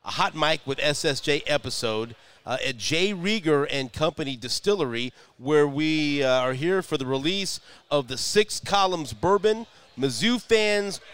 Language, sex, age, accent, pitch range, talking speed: English, male, 40-59, American, 130-170 Hz, 150 wpm